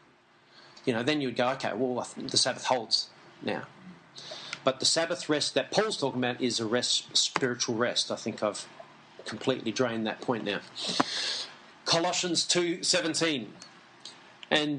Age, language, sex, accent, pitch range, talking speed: 40-59, English, male, Australian, 130-170 Hz, 140 wpm